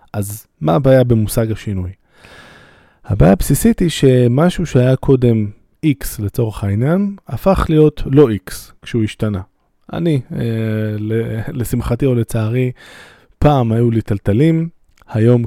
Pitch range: 105-140 Hz